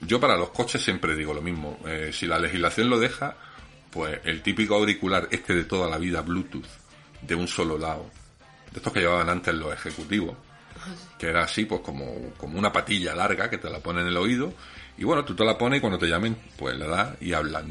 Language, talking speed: Spanish, 225 wpm